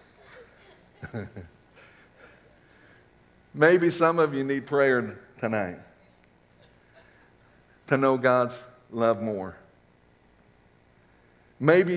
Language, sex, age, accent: English, male, 60-79, American